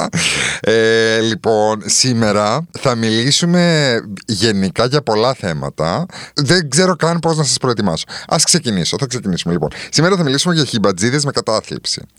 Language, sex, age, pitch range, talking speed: Greek, male, 30-49, 95-150 Hz, 140 wpm